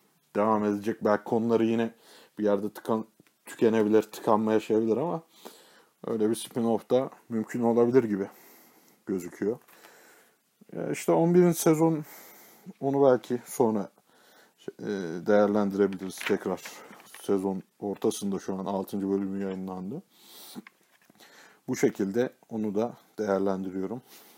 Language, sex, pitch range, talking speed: Turkish, male, 100-125 Hz, 100 wpm